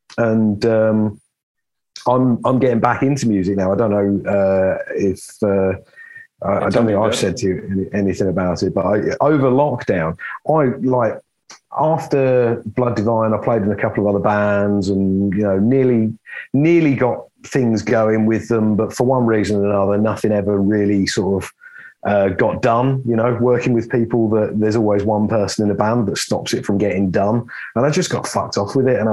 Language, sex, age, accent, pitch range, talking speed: English, male, 30-49, British, 100-125 Hz, 200 wpm